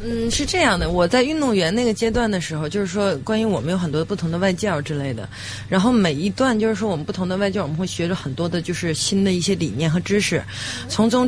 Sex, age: female, 20-39